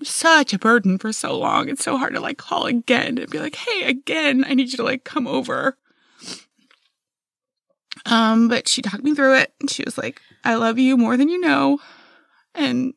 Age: 20-39